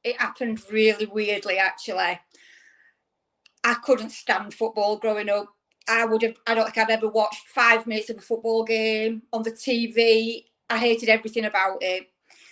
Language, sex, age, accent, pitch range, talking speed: English, female, 30-49, British, 210-250 Hz, 165 wpm